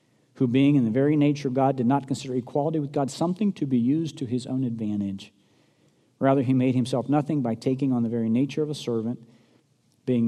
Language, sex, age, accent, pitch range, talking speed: English, male, 50-69, American, 115-150 Hz, 215 wpm